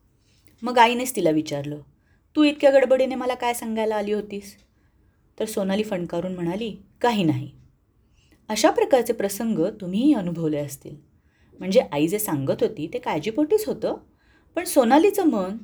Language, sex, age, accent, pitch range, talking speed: Marathi, female, 30-49, native, 165-270 Hz, 135 wpm